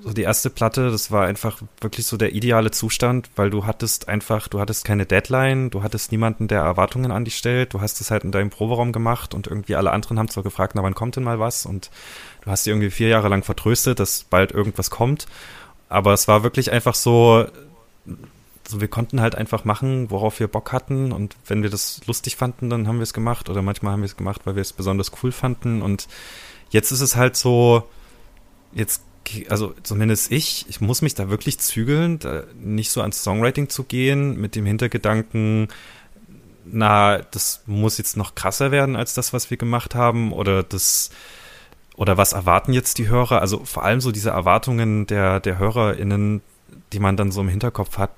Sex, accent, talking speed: male, German, 205 wpm